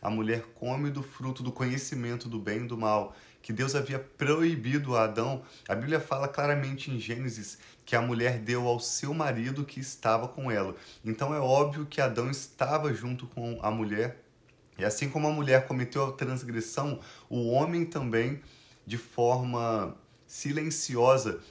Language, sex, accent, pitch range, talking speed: Portuguese, male, Brazilian, 115-140 Hz, 165 wpm